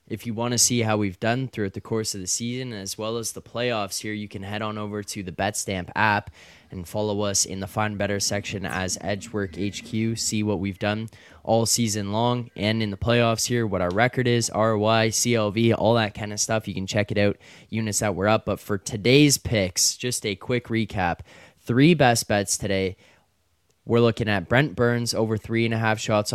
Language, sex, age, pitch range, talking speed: English, male, 20-39, 95-115 Hz, 215 wpm